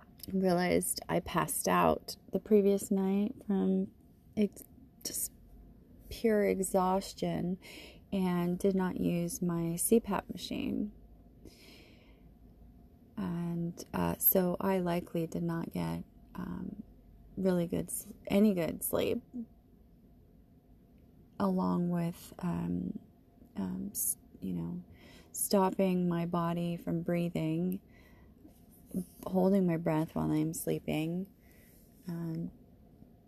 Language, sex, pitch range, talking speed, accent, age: English, female, 170-200 Hz, 90 wpm, American, 30-49